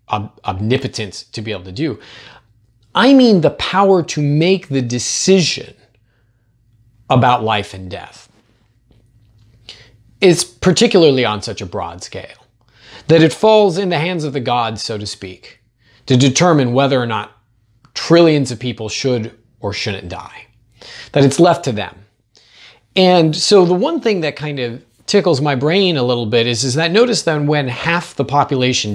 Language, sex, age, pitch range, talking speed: English, male, 30-49, 110-155 Hz, 160 wpm